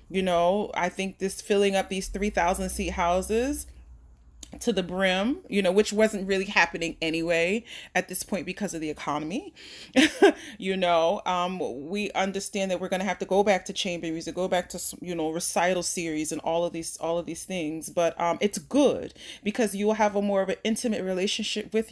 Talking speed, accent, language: 205 wpm, American, English